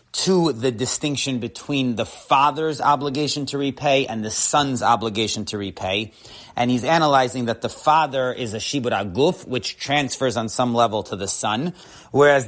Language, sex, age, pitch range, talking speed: English, male, 30-49, 120-145 Hz, 165 wpm